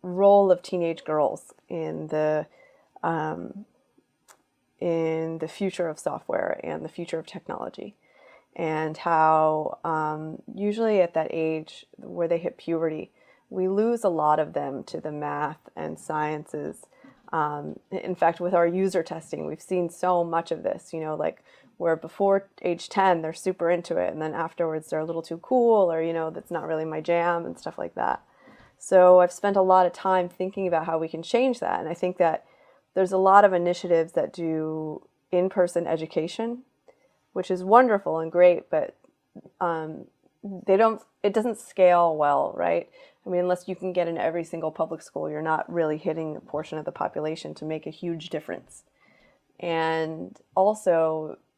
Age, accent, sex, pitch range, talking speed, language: 30-49, American, female, 160-185 Hz, 175 wpm, English